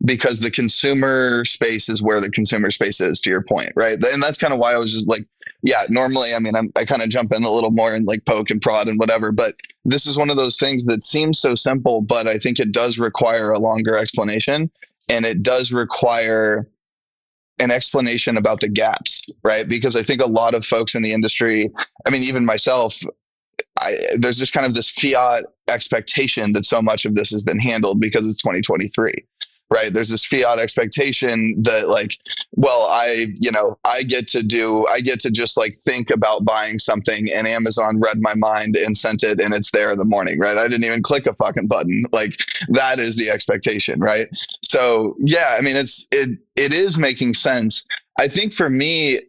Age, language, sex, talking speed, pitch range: 20-39, English, male, 210 wpm, 110-130 Hz